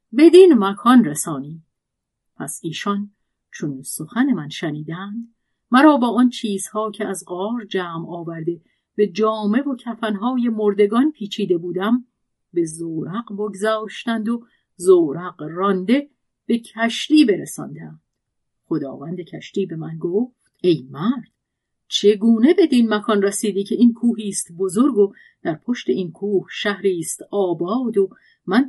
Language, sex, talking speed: Persian, female, 125 wpm